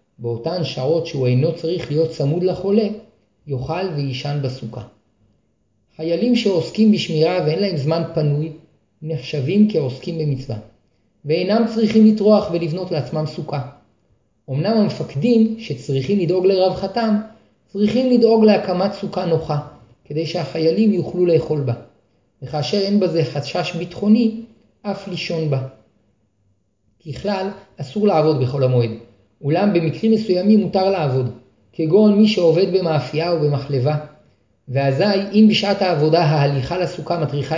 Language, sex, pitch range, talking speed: Hebrew, male, 140-195 Hz, 115 wpm